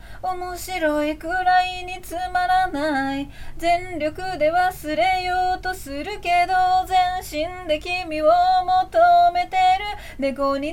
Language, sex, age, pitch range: Japanese, female, 20-39, 335-400 Hz